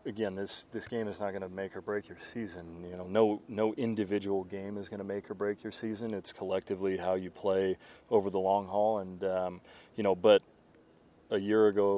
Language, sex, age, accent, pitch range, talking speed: English, male, 30-49, American, 95-105 Hz, 220 wpm